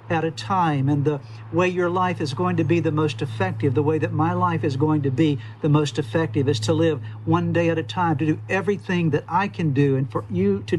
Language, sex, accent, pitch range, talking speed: English, male, American, 140-175 Hz, 255 wpm